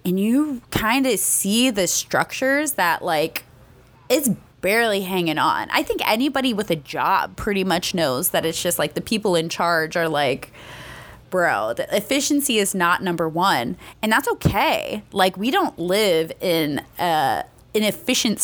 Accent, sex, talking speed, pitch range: American, female, 155 wpm, 165-210 Hz